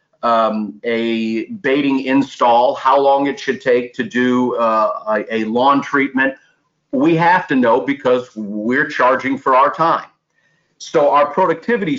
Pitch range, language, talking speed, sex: 125-155 Hz, English, 145 wpm, male